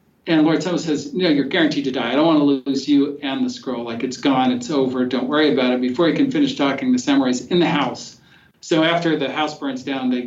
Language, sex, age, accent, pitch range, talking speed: English, male, 50-69, American, 130-165 Hz, 255 wpm